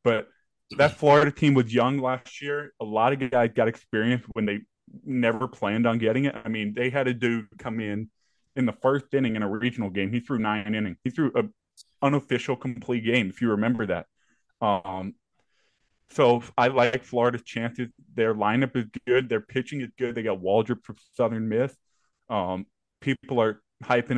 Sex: male